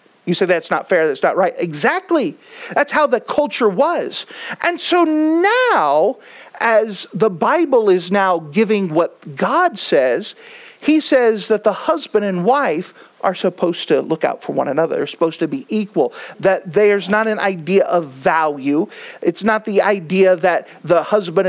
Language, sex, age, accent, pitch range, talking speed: English, male, 50-69, American, 175-255 Hz, 170 wpm